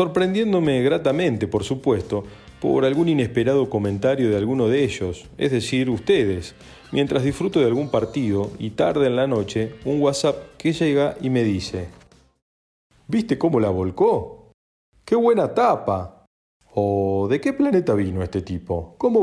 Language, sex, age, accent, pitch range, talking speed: Spanish, male, 40-59, Argentinian, 100-140 Hz, 145 wpm